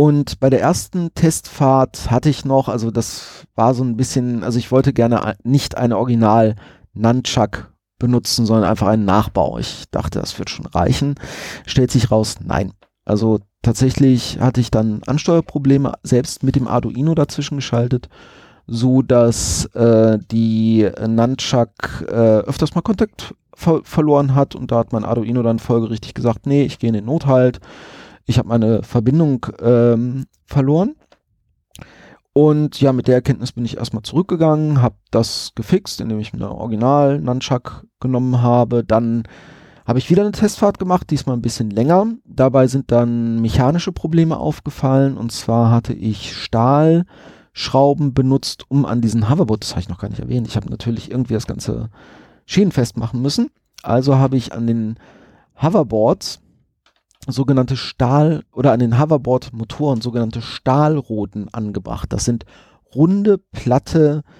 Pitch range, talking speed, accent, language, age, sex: 115-140 Hz, 150 wpm, German, German, 30-49, male